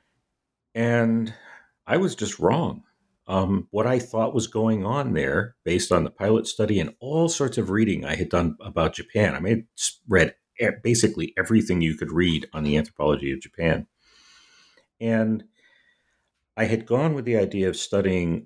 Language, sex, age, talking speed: English, male, 50-69, 165 wpm